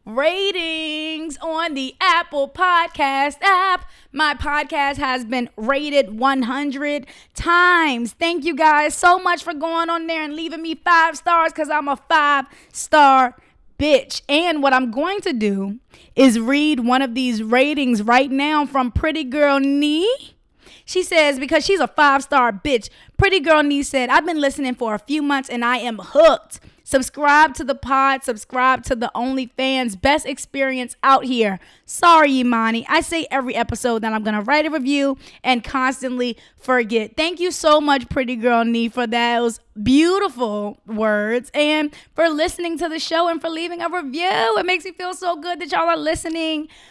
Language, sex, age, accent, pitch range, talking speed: English, female, 20-39, American, 255-325 Hz, 170 wpm